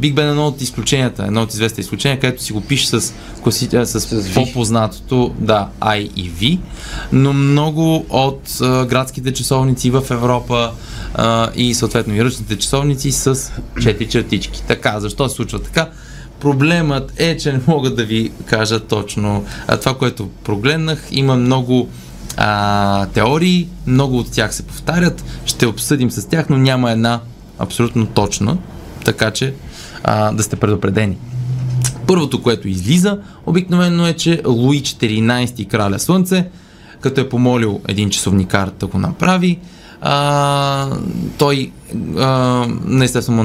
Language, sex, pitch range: Bulgarian, male, 110-140 Hz